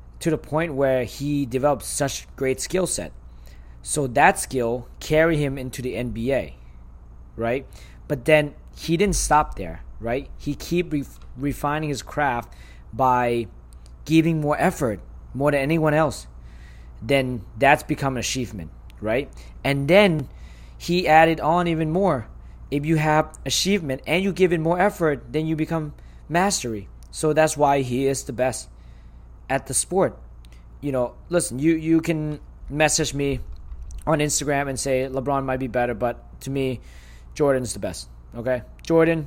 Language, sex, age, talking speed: English, male, 20-39, 155 wpm